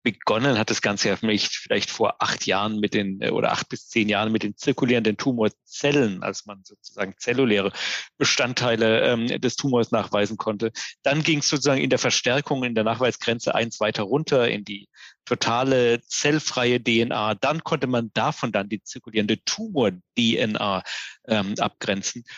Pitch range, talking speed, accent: 110-135 Hz, 160 wpm, German